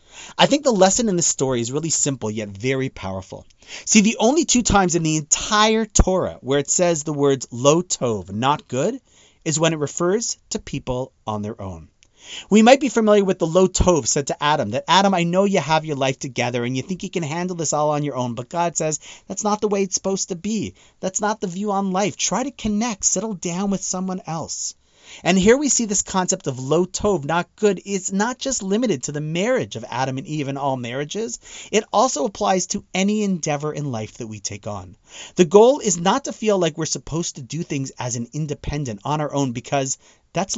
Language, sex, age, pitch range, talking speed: English, male, 30-49, 140-200 Hz, 225 wpm